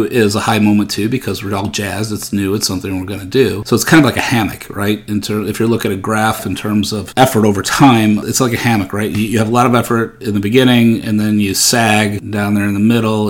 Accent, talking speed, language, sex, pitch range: American, 280 wpm, English, male, 100-120 Hz